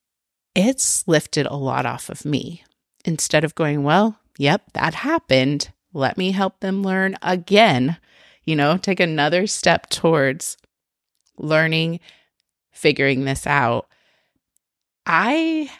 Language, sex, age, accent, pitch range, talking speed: English, female, 30-49, American, 145-195 Hz, 120 wpm